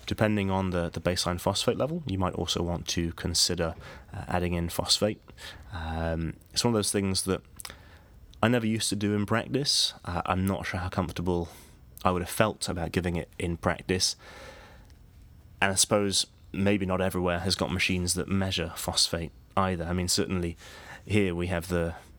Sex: male